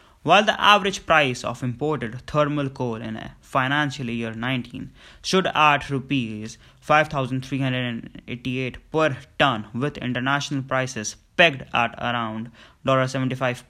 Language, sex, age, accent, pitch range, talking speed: English, male, 20-39, Indian, 115-140 Hz, 150 wpm